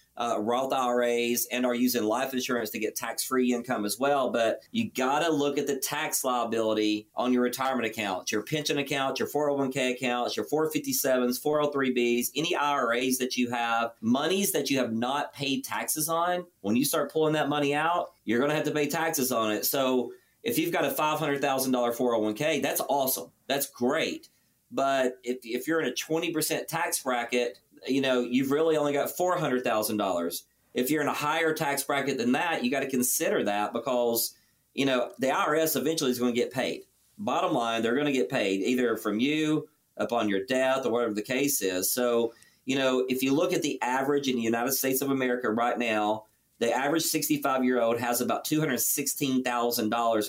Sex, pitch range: male, 120-145 Hz